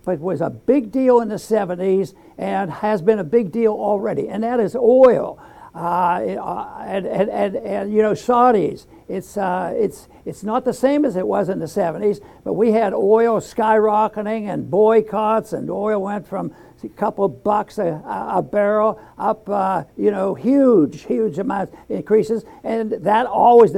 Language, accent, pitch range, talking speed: English, American, 200-240 Hz, 170 wpm